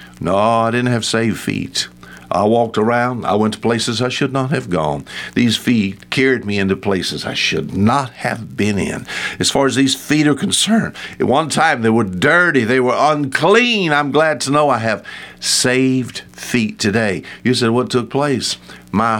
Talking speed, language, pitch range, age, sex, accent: 190 wpm, English, 95-150 Hz, 60-79, male, American